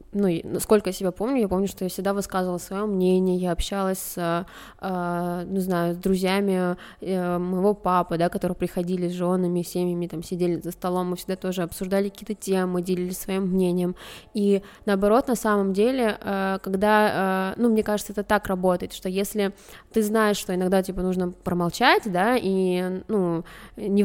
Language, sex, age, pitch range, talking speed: Russian, female, 20-39, 185-210 Hz, 165 wpm